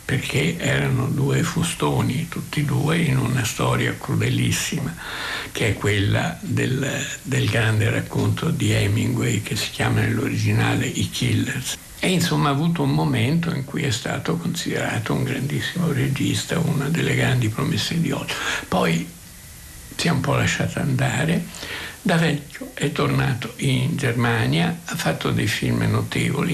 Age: 60-79